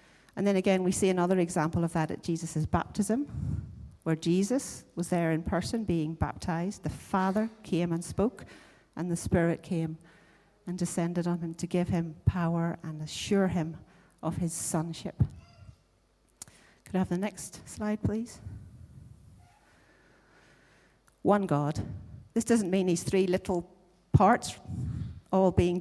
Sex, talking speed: female, 140 wpm